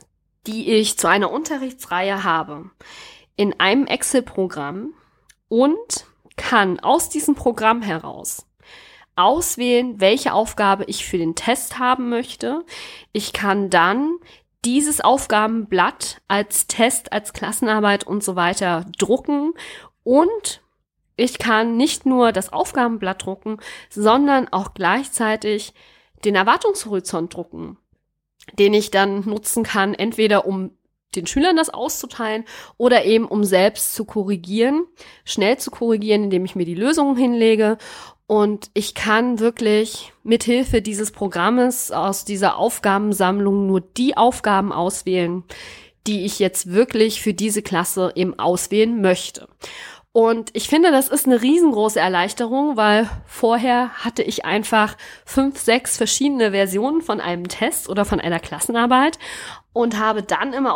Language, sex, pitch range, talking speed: German, female, 200-250 Hz, 125 wpm